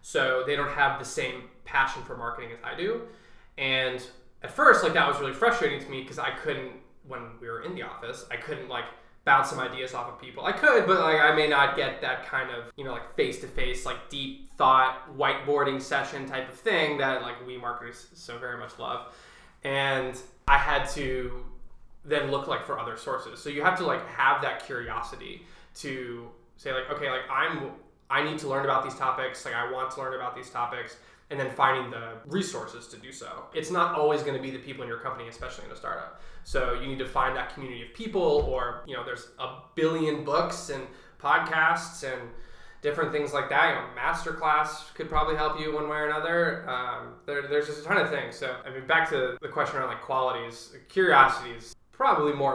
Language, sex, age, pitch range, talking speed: English, male, 20-39, 125-150 Hz, 220 wpm